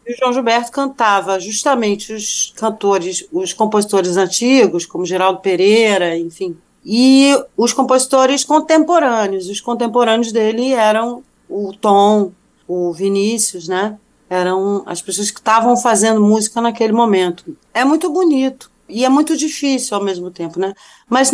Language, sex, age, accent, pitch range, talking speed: Portuguese, female, 40-59, Brazilian, 195-255 Hz, 135 wpm